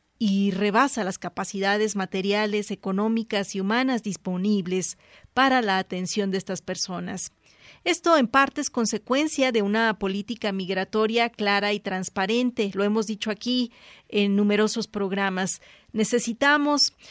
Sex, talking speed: female, 125 wpm